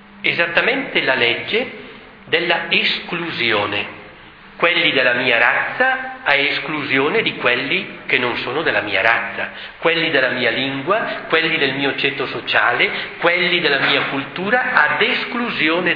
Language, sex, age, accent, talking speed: Italian, male, 50-69, native, 130 wpm